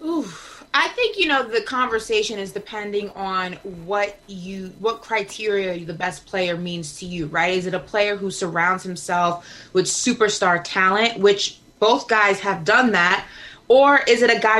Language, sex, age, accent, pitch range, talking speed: English, female, 20-39, American, 185-235 Hz, 170 wpm